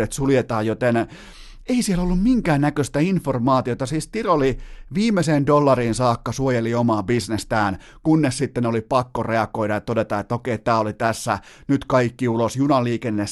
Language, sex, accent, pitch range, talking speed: Finnish, male, native, 115-140 Hz, 150 wpm